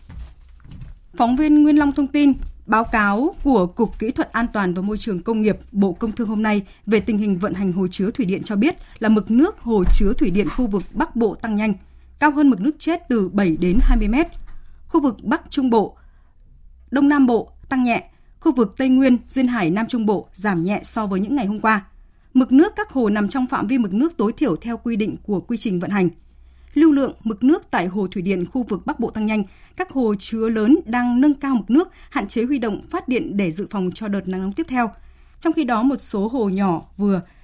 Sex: female